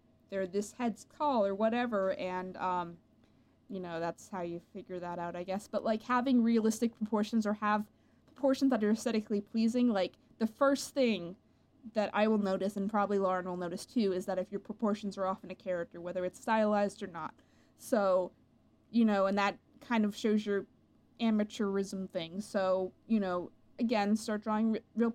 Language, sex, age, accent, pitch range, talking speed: English, female, 20-39, American, 190-225 Hz, 180 wpm